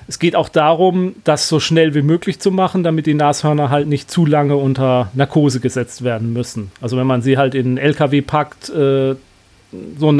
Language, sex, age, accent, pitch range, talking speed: German, male, 40-59, German, 135-170 Hz, 205 wpm